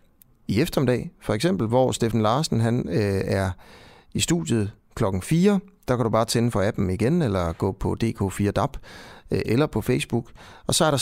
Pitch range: 105-135 Hz